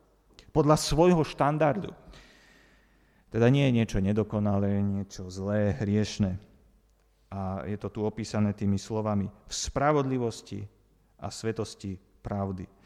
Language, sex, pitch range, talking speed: Slovak, male, 105-140 Hz, 110 wpm